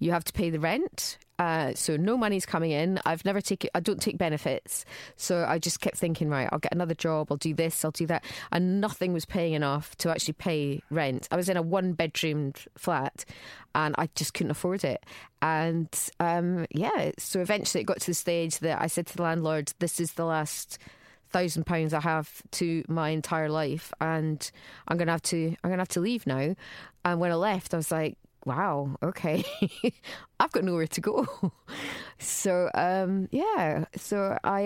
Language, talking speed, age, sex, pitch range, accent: English, 200 wpm, 20-39, female, 160-190 Hz, British